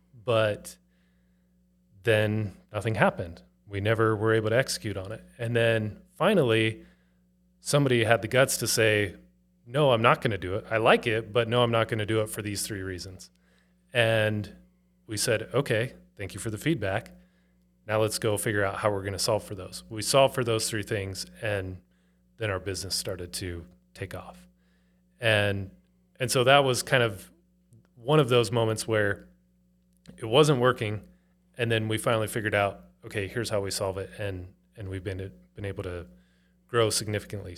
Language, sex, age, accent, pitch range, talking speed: English, male, 30-49, American, 90-120 Hz, 175 wpm